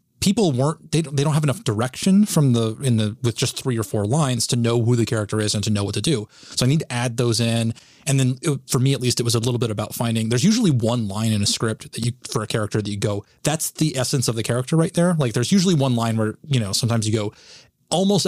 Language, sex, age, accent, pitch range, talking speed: English, male, 30-49, American, 110-140 Hz, 280 wpm